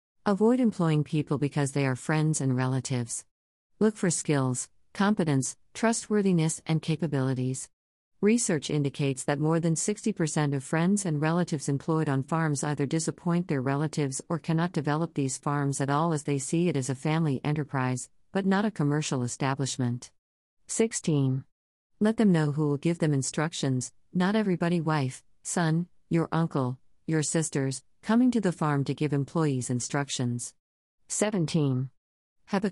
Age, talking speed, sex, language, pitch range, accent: 50-69, 150 wpm, female, English, 135-170 Hz, American